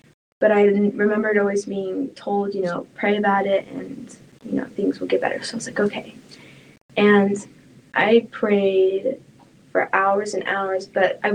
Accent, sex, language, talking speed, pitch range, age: American, female, English, 170 wpm, 190-215 Hz, 10-29